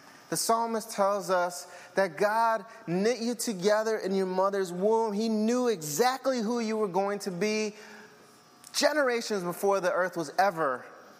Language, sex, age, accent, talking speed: English, male, 30-49, American, 150 wpm